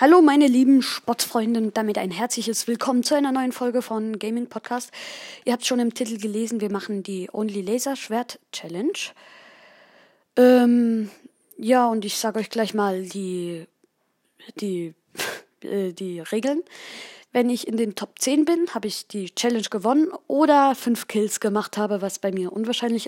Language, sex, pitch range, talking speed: German, female, 205-270 Hz, 165 wpm